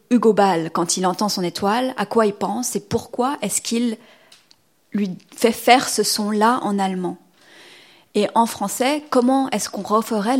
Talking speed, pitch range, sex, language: 165 wpm, 185-235 Hz, female, French